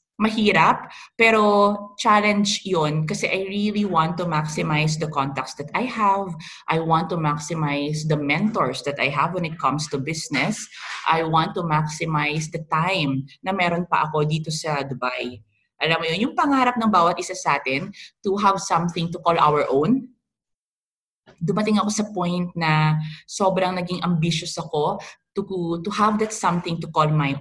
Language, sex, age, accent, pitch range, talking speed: English, female, 20-39, Filipino, 160-225 Hz, 165 wpm